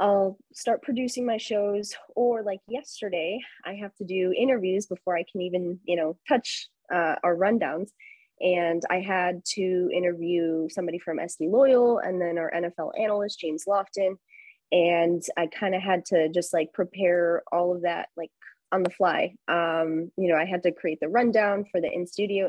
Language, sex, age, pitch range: English, female, 20-39, 175-215 Hz